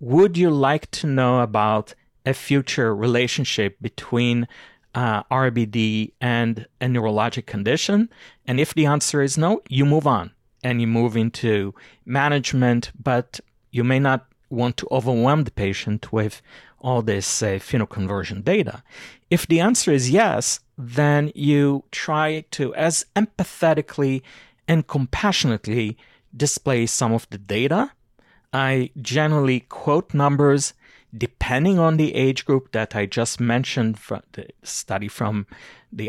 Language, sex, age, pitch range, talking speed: English, male, 40-59, 115-145 Hz, 135 wpm